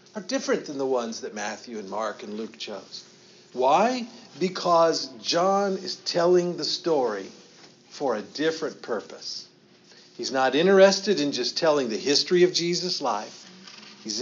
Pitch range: 145-195 Hz